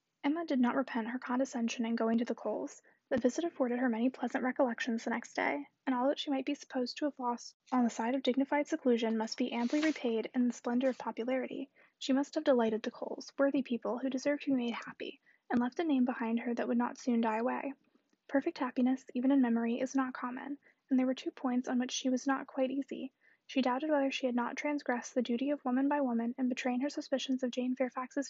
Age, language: 20-39, English